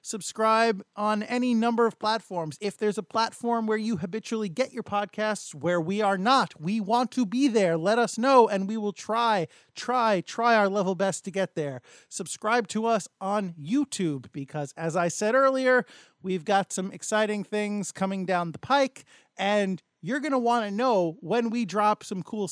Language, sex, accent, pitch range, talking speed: English, male, American, 180-220 Hz, 190 wpm